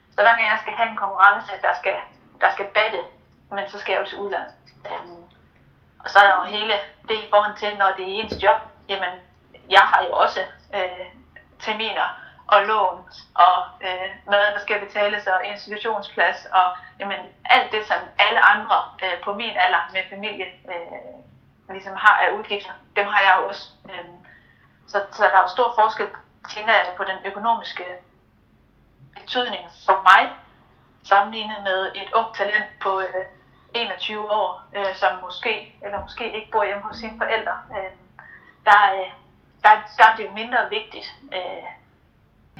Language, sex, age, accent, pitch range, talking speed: Danish, female, 30-49, native, 190-220 Hz, 165 wpm